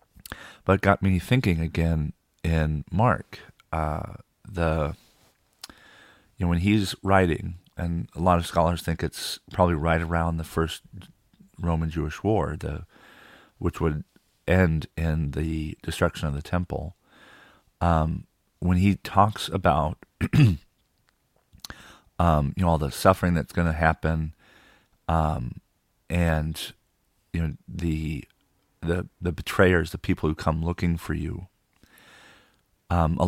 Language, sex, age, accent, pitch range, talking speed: English, male, 40-59, American, 80-95 Hz, 130 wpm